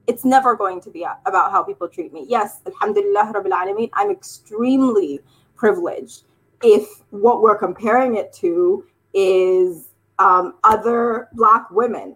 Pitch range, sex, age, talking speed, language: 195-270 Hz, female, 20-39, 140 wpm, English